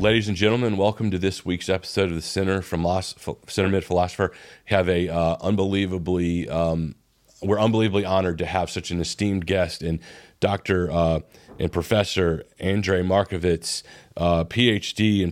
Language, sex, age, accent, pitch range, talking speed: English, male, 30-49, American, 85-95 Hz, 155 wpm